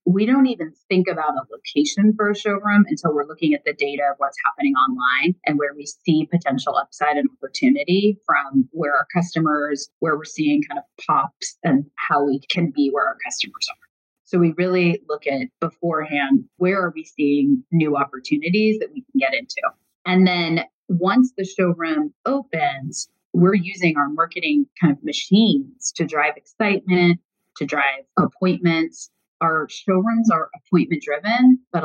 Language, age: English, 30-49